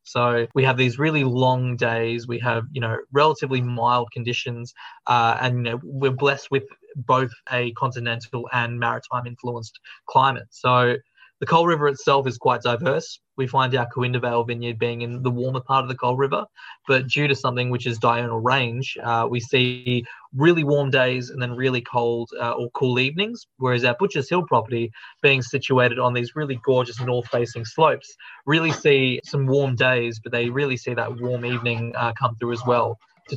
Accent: Australian